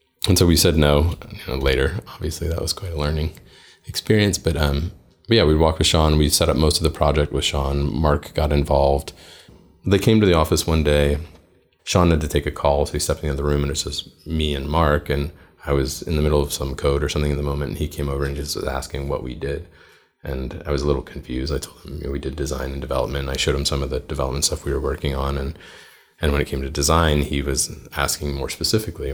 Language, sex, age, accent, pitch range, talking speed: English, male, 30-49, American, 70-80 Hz, 255 wpm